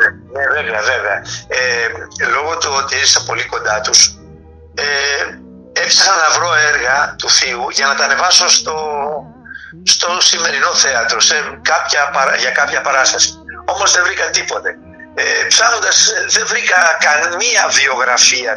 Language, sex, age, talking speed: Greek, male, 60-79, 135 wpm